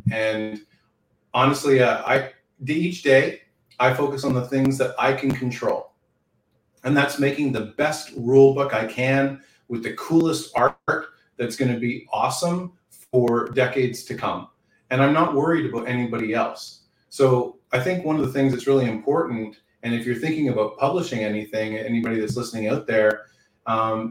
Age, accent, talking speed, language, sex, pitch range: 30-49, American, 165 wpm, English, male, 115-135 Hz